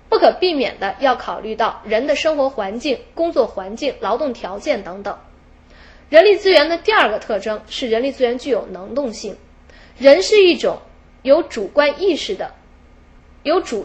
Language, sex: Chinese, female